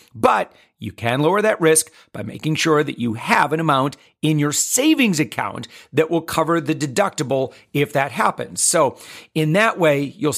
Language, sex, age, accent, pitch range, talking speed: English, male, 40-59, American, 130-175 Hz, 180 wpm